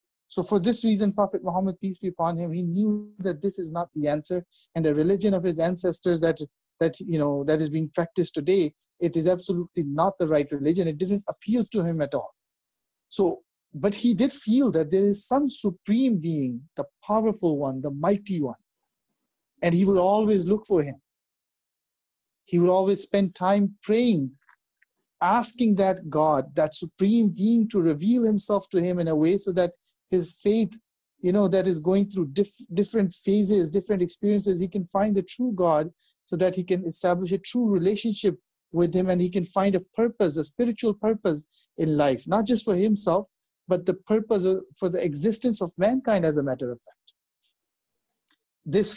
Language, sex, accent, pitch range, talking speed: English, male, Indian, 160-205 Hz, 185 wpm